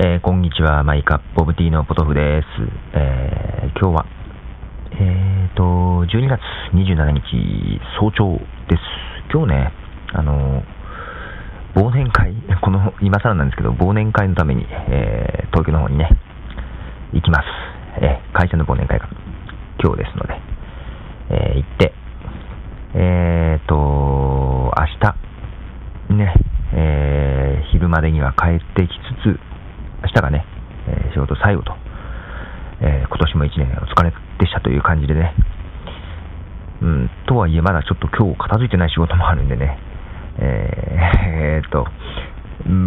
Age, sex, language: 40-59, male, Japanese